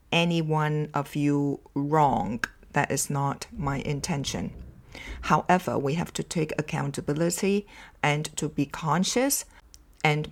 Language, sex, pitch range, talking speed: English, female, 140-200 Hz, 120 wpm